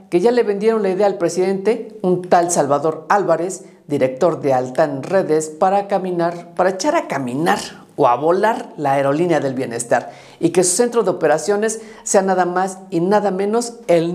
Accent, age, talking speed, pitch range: Mexican, 50-69, 175 wpm, 160-205 Hz